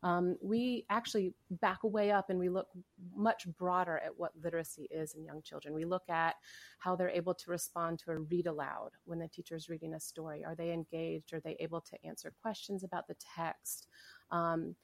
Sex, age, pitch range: female, 30-49, 170-200 Hz